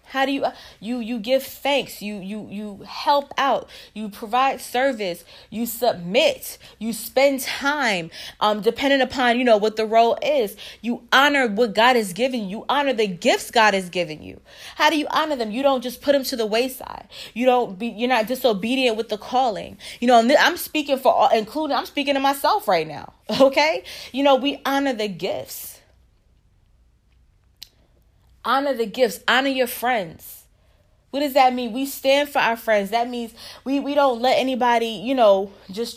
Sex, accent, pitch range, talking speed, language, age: female, American, 225-275 Hz, 185 wpm, English, 20-39